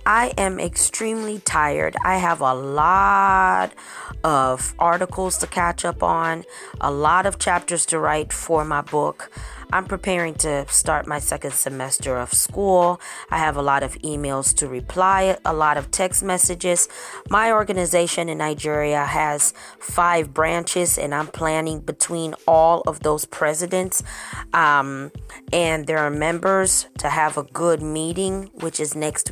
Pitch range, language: 150-180 Hz, English